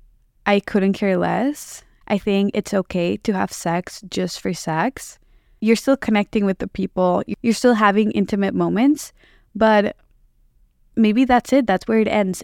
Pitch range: 190-230 Hz